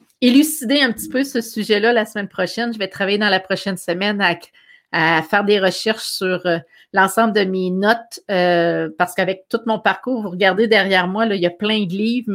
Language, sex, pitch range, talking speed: French, female, 185-220 Hz, 210 wpm